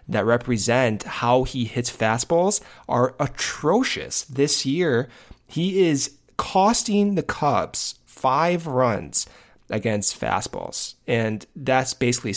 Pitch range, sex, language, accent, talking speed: 110-135 Hz, male, English, American, 105 wpm